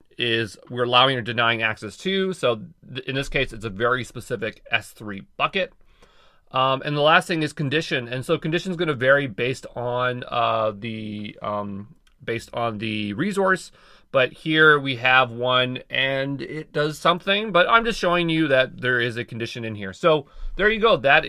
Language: English